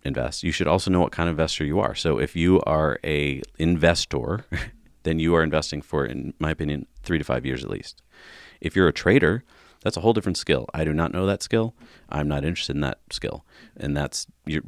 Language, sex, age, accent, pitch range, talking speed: English, male, 40-59, American, 75-90 Hz, 220 wpm